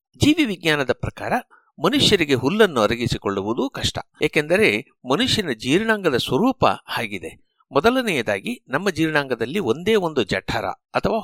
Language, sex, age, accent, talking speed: Kannada, male, 60-79, native, 100 wpm